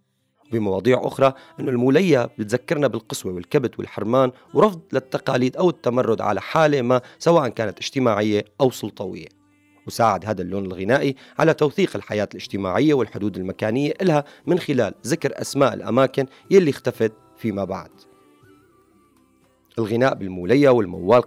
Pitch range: 105-135 Hz